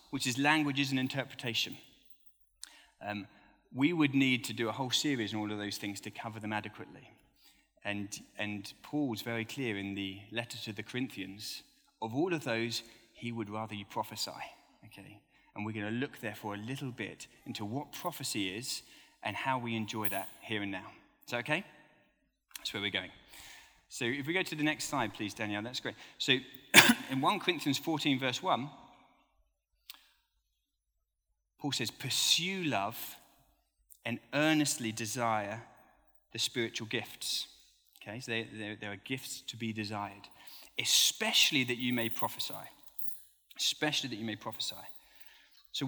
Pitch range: 105-145 Hz